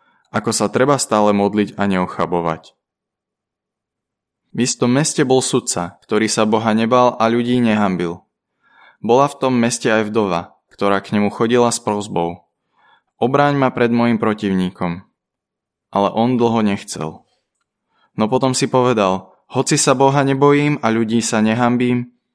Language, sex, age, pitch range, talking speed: Slovak, male, 20-39, 105-125 Hz, 140 wpm